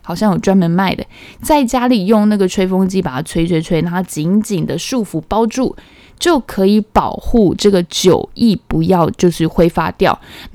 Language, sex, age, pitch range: Chinese, female, 10-29, 175-215 Hz